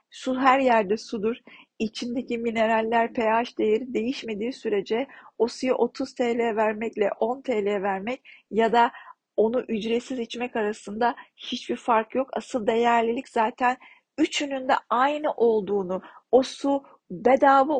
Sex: female